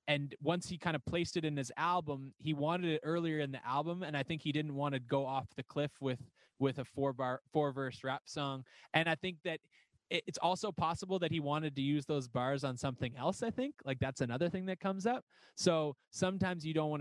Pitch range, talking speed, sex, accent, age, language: 130-155 Hz, 240 wpm, male, American, 20-39, English